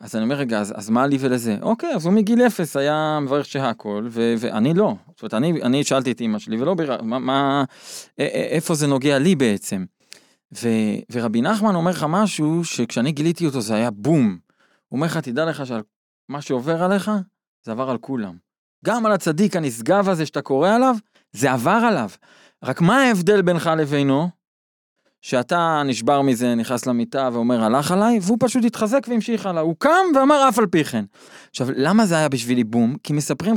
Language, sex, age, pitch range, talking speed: Hebrew, male, 20-39, 130-210 Hz, 190 wpm